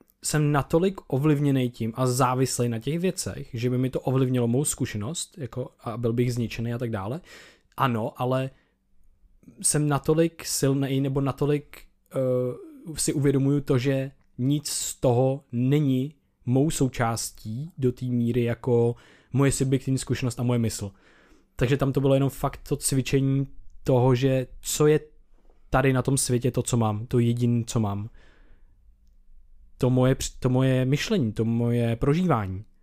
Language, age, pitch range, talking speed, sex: Czech, 20-39, 120-145 Hz, 150 wpm, male